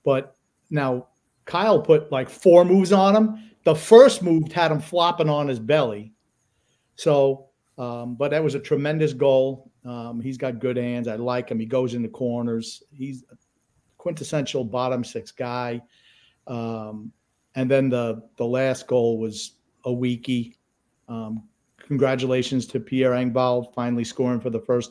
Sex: male